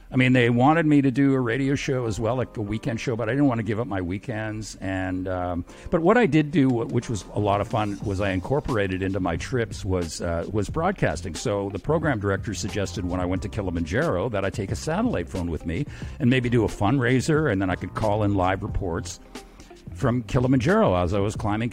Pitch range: 100-145 Hz